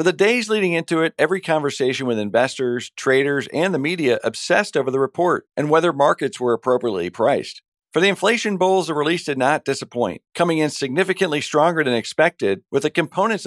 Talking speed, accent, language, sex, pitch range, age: 185 wpm, American, English, male, 120-155 Hz, 50-69